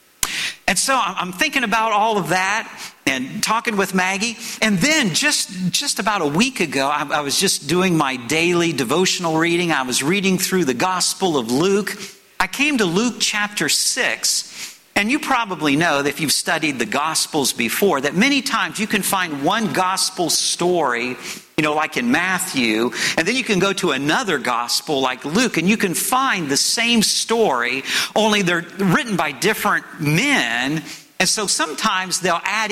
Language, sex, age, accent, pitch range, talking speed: English, male, 50-69, American, 165-215 Hz, 175 wpm